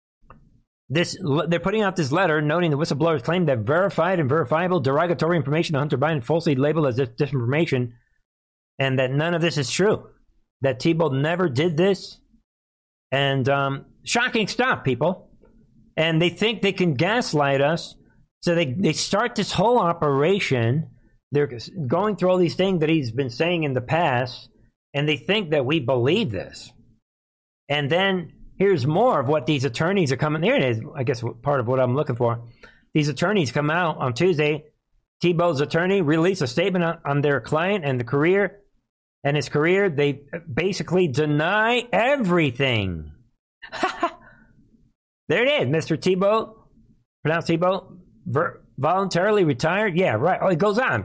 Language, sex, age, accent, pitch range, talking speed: English, male, 50-69, American, 135-180 Hz, 160 wpm